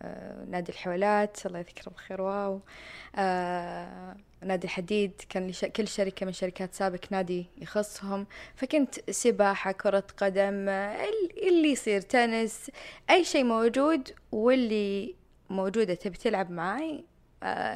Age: 20-39